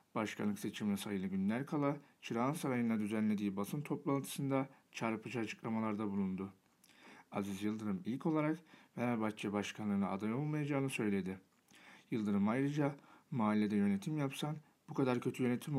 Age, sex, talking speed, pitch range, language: 60-79, male, 120 wpm, 105-135 Hz, Turkish